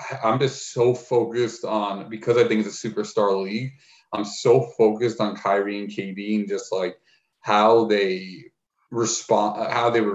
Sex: male